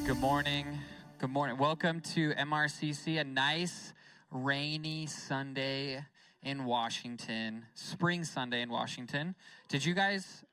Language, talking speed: English, 115 wpm